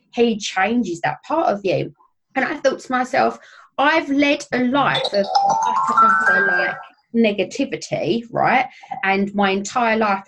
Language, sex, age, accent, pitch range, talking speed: English, female, 20-39, British, 180-235 Hz, 130 wpm